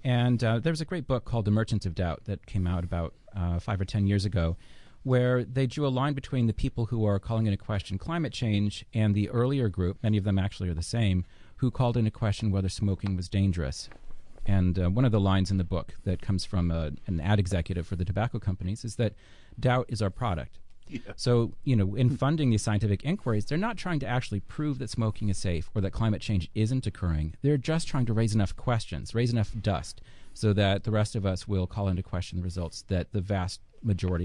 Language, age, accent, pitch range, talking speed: English, 40-59, American, 95-125 Hz, 235 wpm